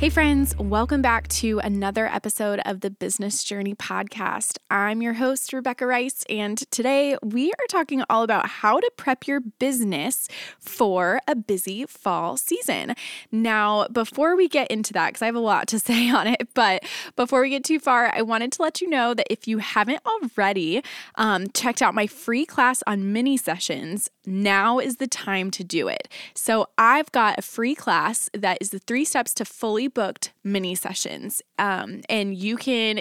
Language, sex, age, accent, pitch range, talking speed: English, female, 20-39, American, 200-255 Hz, 185 wpm